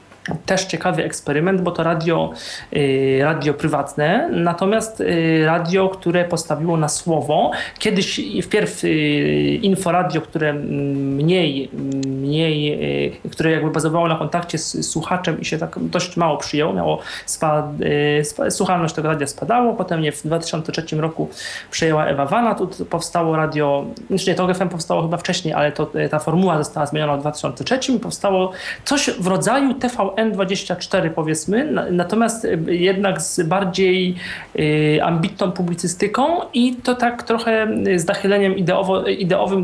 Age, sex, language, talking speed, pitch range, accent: 30-49, male, Polish, 125 wpm, 155-200 Hz, native